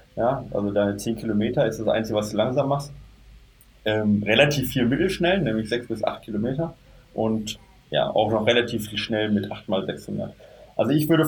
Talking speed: 170 wpm